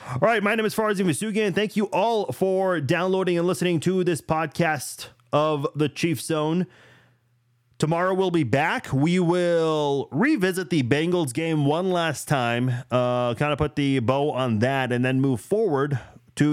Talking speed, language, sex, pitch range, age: 175 wpm, English, male, 125-160 Hz, 30-49